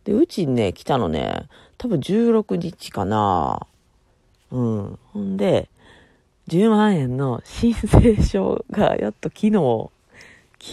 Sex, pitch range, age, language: female, 115-185 Hz, 40-59, Japanese